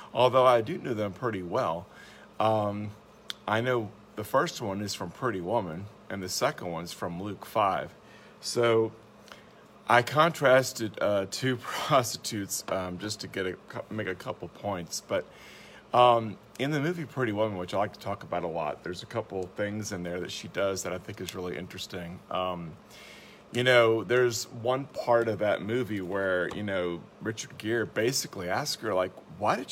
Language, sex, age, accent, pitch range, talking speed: English, male, 40-59, American, 95-120 Hz, 185 wpm